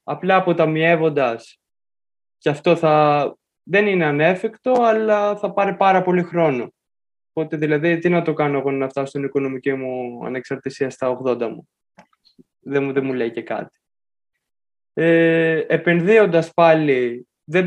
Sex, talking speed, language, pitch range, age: male, 140 wpm, Greek, 135-175 Hz, 20-39